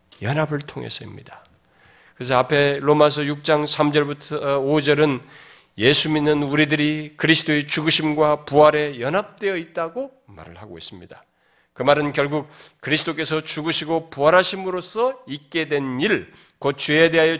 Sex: male